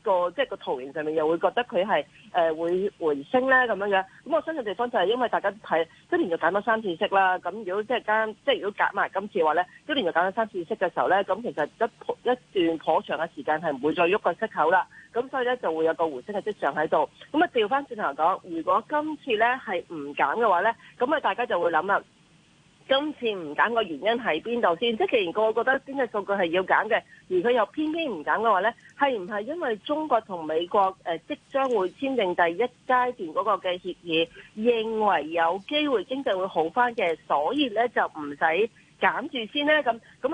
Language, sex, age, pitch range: Chinese, female, 40-59, 180-265 Hz